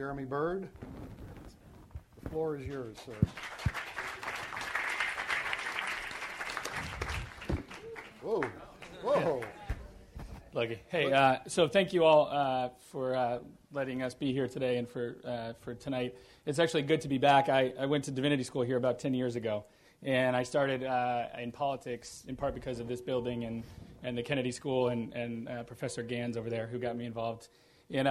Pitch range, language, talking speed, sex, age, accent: 120-140 Hz, English, 160 wpm, male, 40-59, American